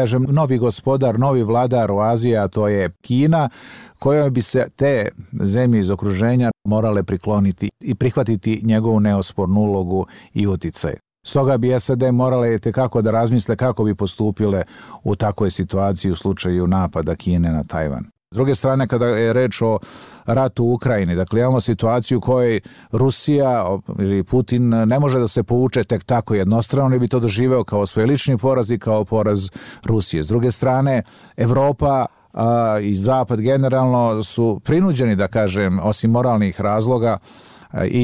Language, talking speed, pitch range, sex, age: Croatian, 150 wpm, 105-130 Hz, male, 50-69